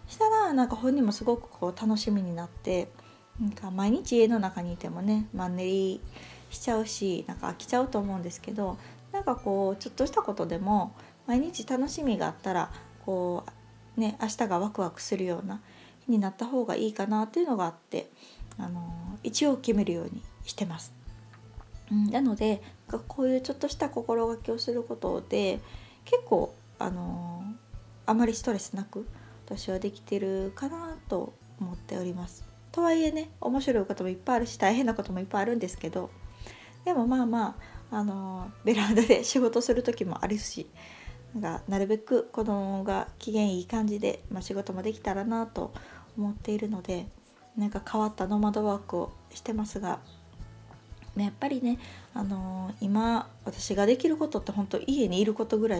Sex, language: female, Japanese